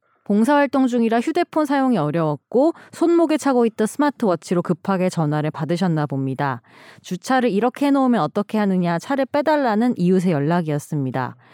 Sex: female